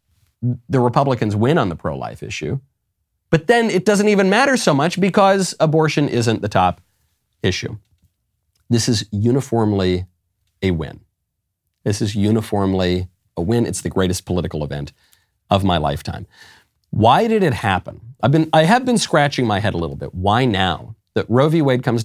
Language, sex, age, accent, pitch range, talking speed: English, male, 40-59, American, 90-120 Hz, 165 wpm